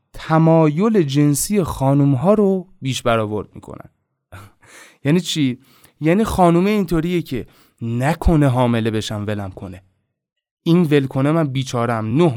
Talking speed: 115 wpm